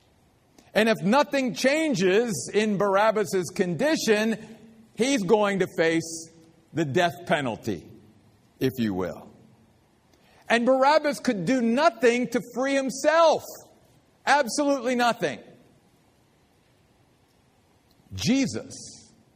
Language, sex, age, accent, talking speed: English, male, 50-69, American, 85 wpm